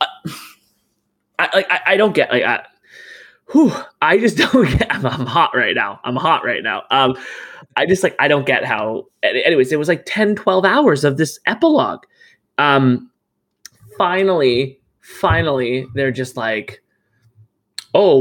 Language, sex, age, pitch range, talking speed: English, male, 20-39, 120-150 Hz, 150 wpm